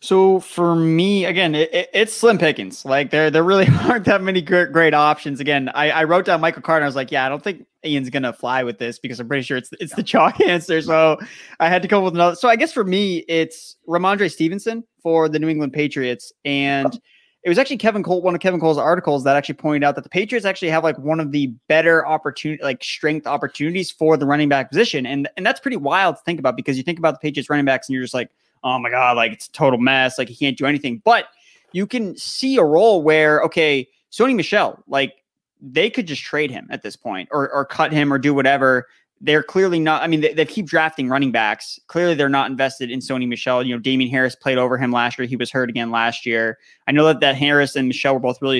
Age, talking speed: 20-39, 255 wpm